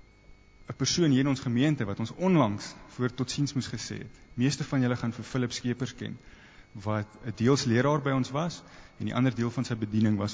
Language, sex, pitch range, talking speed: English, male, 105-130 Hz, 220 wpm